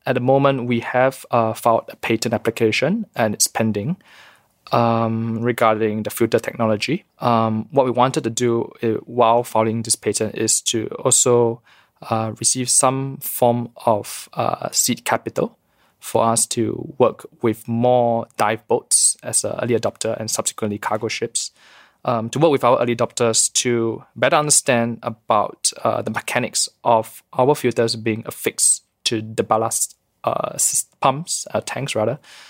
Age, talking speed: 20-39, 155 wpm